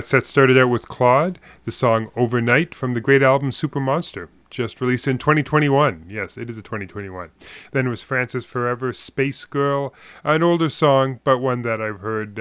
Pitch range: 115-140 Hz